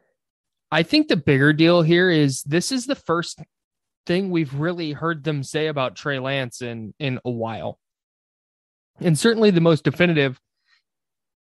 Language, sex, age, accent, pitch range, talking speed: English, male, 20-39, American, 130-165 Hz, 150 wpm